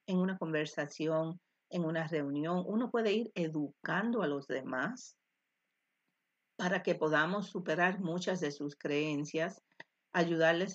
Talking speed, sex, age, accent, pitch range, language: 125 wpm, female, 50-69, American, 150-180 Hz, Spanish